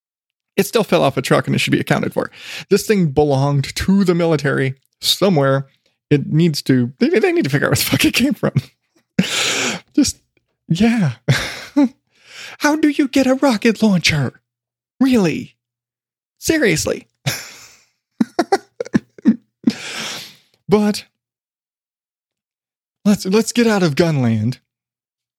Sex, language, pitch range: male, English, 135-205 Hz